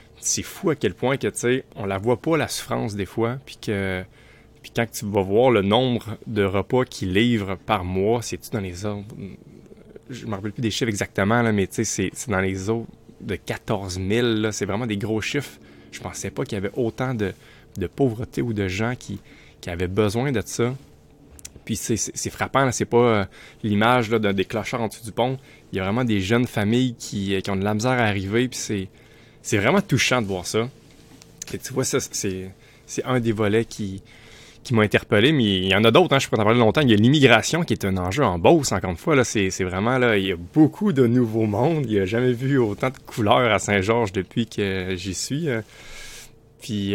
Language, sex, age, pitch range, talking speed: French, male, 20-39, 100-125 Hz, 235 wpm